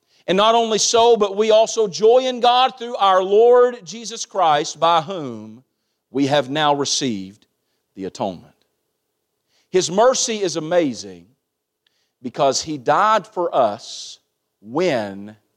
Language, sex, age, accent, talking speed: English, male, 50-69, American, 125 wpm